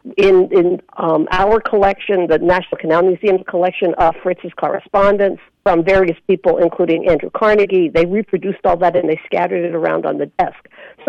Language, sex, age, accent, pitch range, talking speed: English, female, 50-69, American, 170-215 Hz, 175 wpm